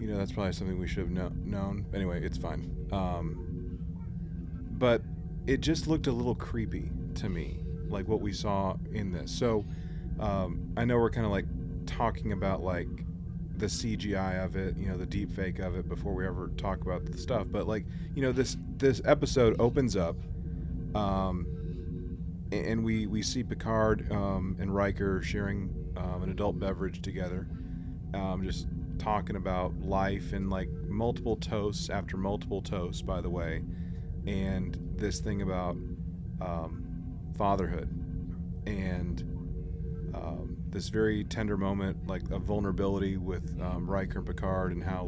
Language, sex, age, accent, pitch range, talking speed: English, male, 30-49, American, 85-100 Hz, 160 wpm